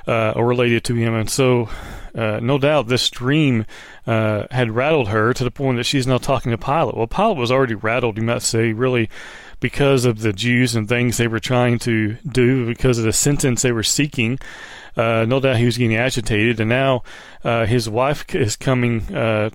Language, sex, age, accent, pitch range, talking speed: English, male, 40-59, American, 115-140 Hz, 205 wpm